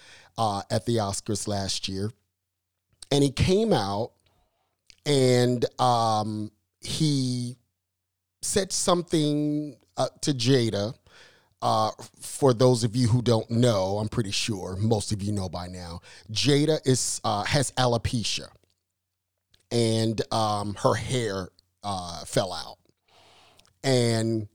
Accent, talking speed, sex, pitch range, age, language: American, 115 wpm, male, 100-130 Hz, 40-59, English